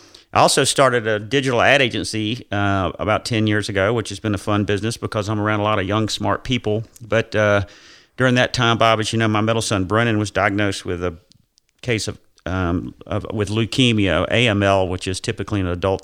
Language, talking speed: English, 210 wpm